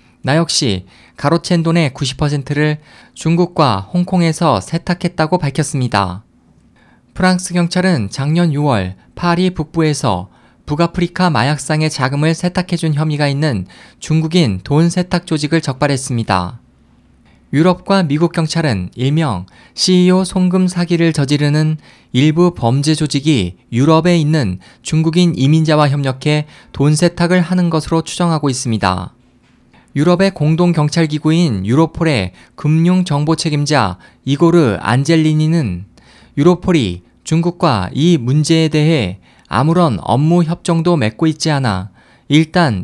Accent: native